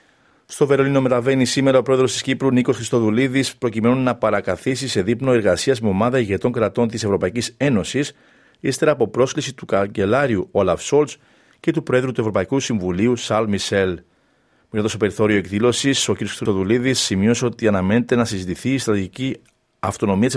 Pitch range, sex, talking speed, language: 105-130 Hz, male, 160 wpm, Greek